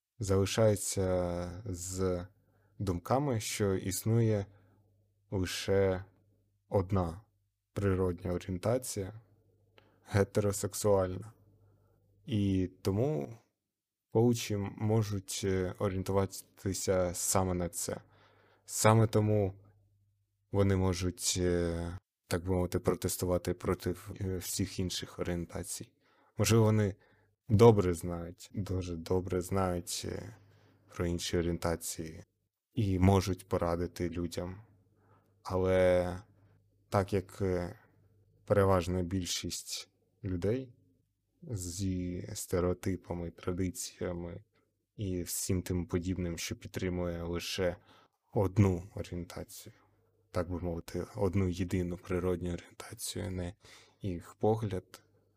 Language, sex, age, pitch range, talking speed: Ukrainian, male, 20-39, 90-105 Hz, 80 wpm